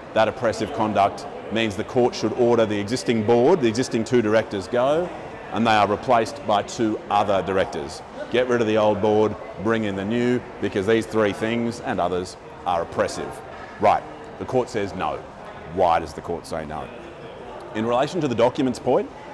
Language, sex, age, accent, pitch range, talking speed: English, male, 30-49, Australian, 105-125 Hz, 185 wpm